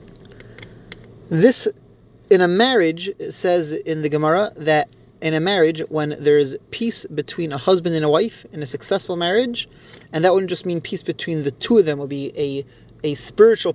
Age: 30-49